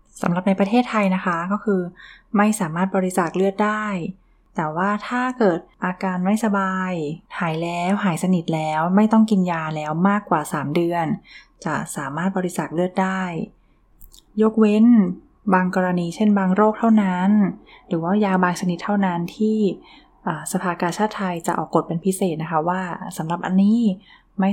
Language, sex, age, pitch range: Thai, female, 20-39, 170-200 Hz